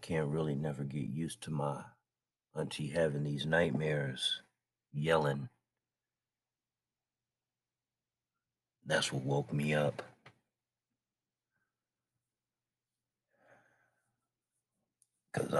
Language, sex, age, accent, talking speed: English, male, 60-79, American, 70 wpm